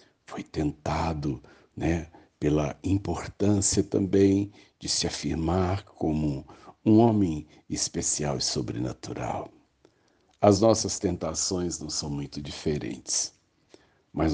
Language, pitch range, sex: Portuguese, 75-100 Hz, male